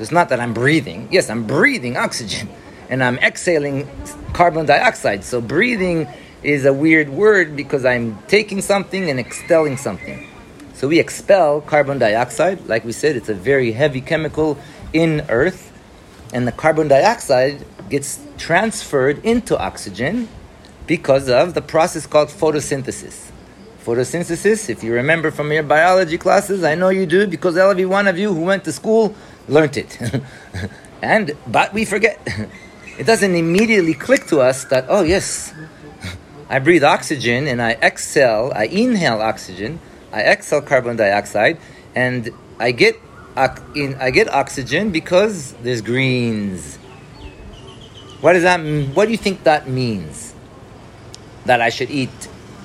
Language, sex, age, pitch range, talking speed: English, male, 40-59, 125-175 Hz, 150 wpm